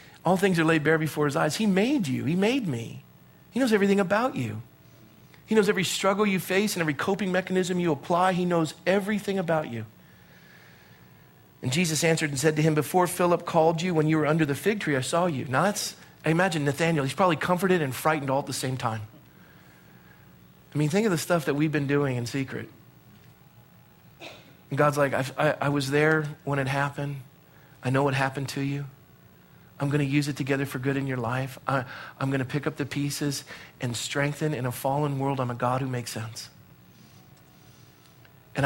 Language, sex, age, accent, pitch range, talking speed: English, male, 40-59, American, 130-160 Hz, 205 wpm